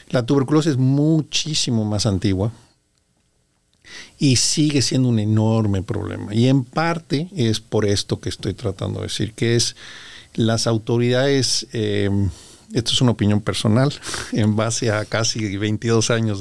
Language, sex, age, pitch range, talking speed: Spanish, male, 50-69, 105-120 Hz, 145 wpm